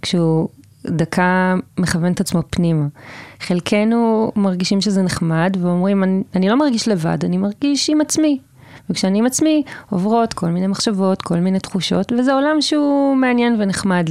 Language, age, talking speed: Hebrew, 20-39, 145 wpm